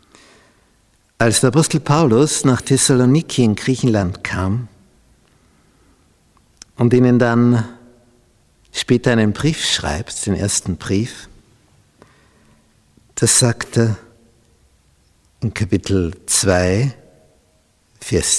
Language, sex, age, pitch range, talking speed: German, male, 60-79, 90-125 Hz, 80 wpm